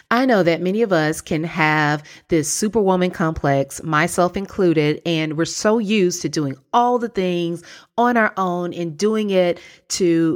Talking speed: 170 wpm